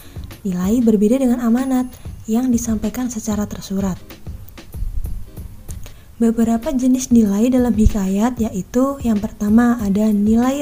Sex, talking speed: female, 100 wpm